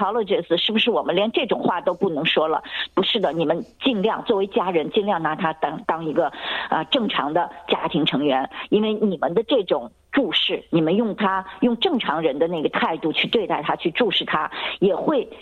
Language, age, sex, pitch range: Chinese, 50-69, female, 170-230 Hz